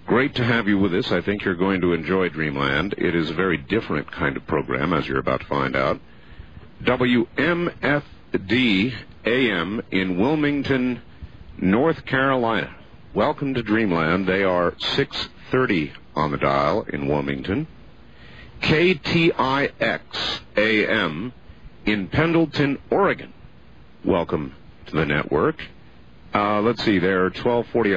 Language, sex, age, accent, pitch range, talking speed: English, male, 50-69, American, 90-130 Hz, 125 wpm